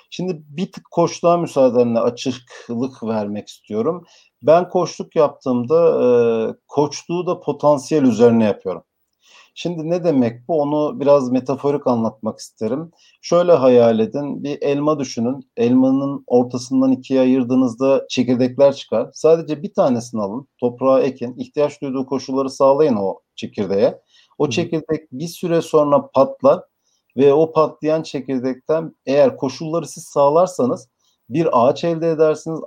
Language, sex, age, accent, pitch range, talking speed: Turkish, male, 50-69, native, 130-170 Hz, 125 wpm